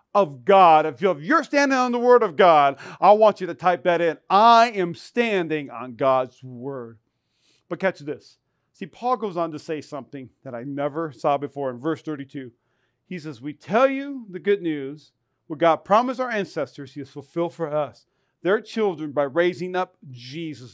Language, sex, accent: English, male, American